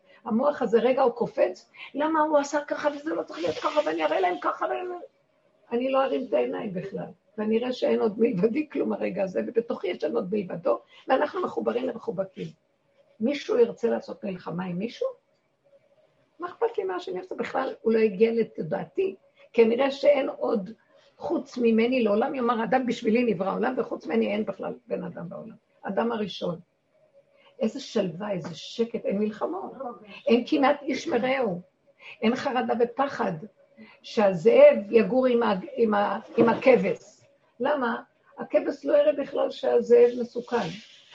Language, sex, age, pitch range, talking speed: Hebrew, female, 50-69, 220-290 Hz, 155 wpm